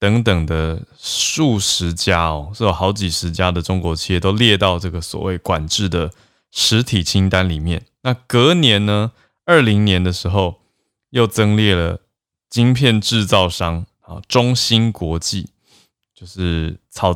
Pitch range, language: 90-115 Hz, Chinese